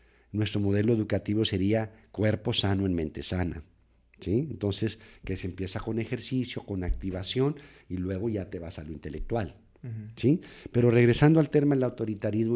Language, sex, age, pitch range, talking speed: English, male, 50-69, 95-130 Hz, 160 wpm